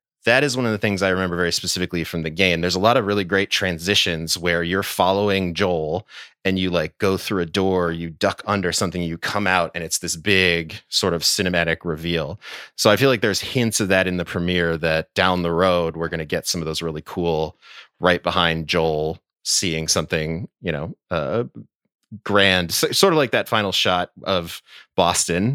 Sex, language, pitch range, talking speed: male, English, 85-100 Hz, 205 wpm